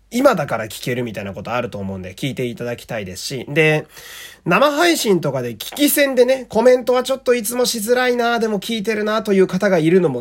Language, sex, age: Japanese, male, 30-49